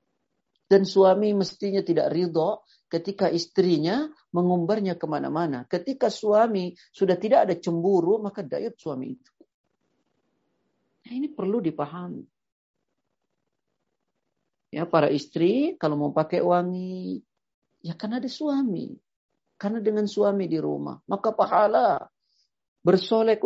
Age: 50-69